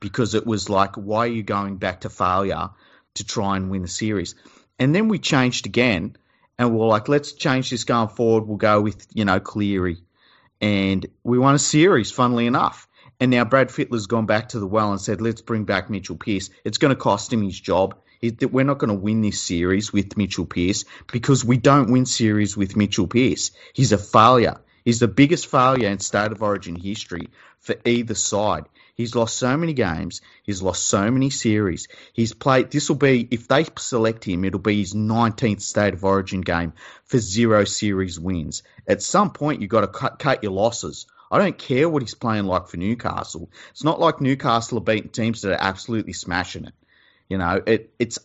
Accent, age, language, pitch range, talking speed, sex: Australian, 30-49, English, 100-120 Hz, 205 wpm, male